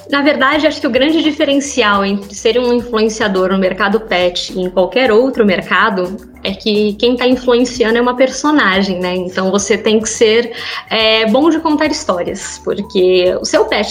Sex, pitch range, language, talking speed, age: female, 220-290 Hz, Portuguese, 180 wpm, 20-39